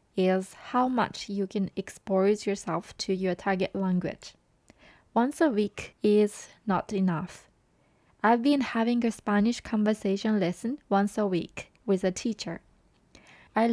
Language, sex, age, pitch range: Japanese, female, 20-39, 190-225 Hz